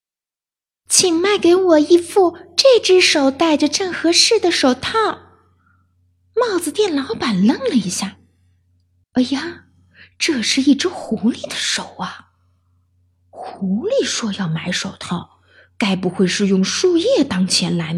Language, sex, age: Chinese, female, 20-39